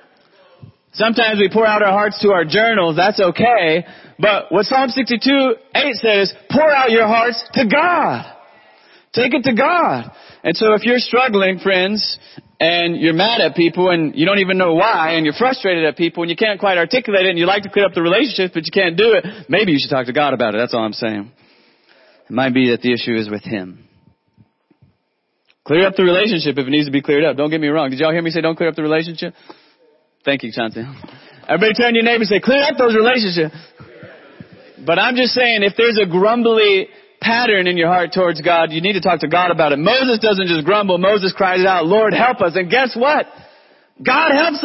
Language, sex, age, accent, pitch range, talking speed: English, male, 30-49, American, 165-235 Hz, 220 wpm